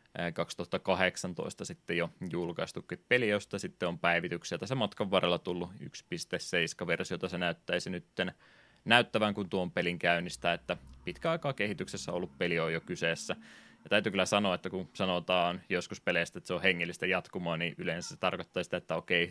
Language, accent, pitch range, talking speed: Finnish, native, 85-100 Hz, 160 wpm